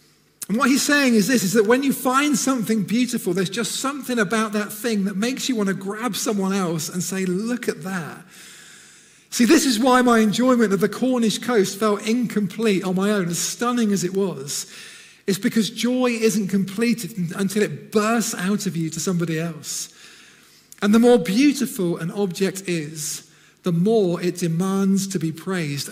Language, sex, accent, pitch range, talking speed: English, male, British, 180-230 Hz, 185 wpm